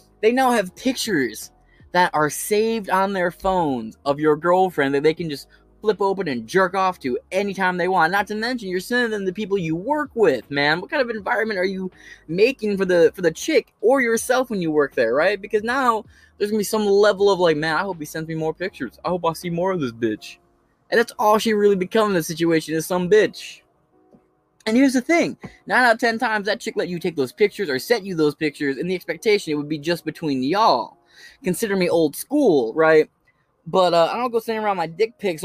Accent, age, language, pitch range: American, 20-39, English, 160-220 Hz